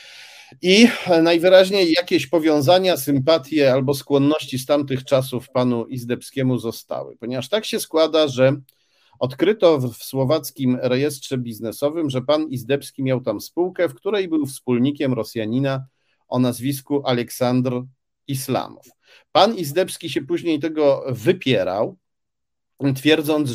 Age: 50-69